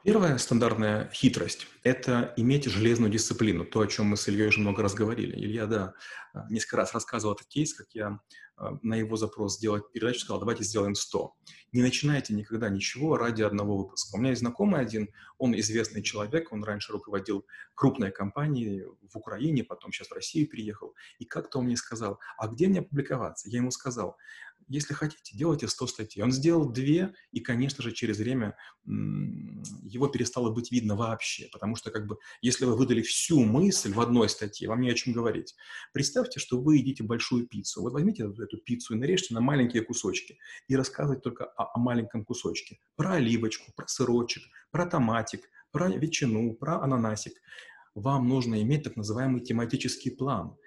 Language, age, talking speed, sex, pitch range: Russian, 30-49, 175 wpm, male, 110-135 Hz